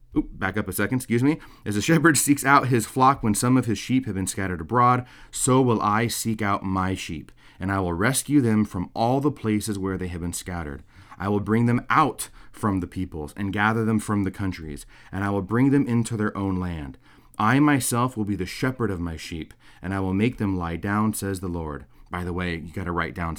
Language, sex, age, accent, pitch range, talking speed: English, male, 30-49, American, 90-115 Hz, 240 wpm